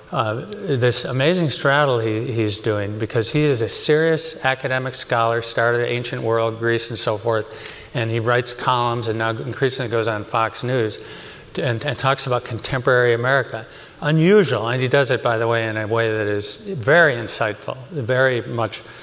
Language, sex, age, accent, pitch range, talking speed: English, male, 60-79, American, 115-140 Hz, 175 wpm